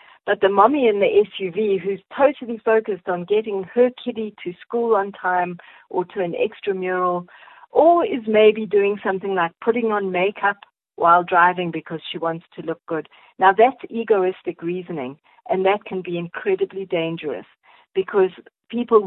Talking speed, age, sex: 155 wpm, 50-69, female